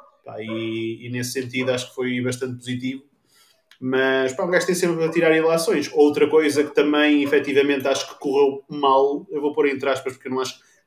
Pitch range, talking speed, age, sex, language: 130-160 Hz, 205 wpm, 20-39, male, Portuguese